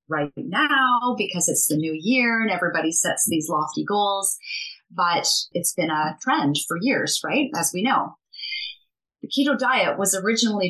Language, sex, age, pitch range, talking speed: English, female, 30-49, 160-205 Hz, 165 wpm